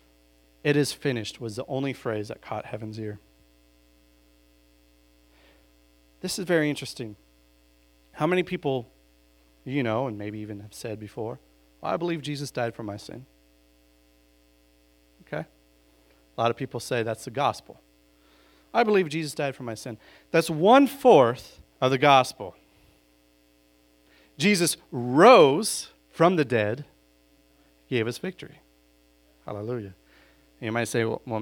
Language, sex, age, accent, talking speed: English, male, 40-59, American, 130 wpm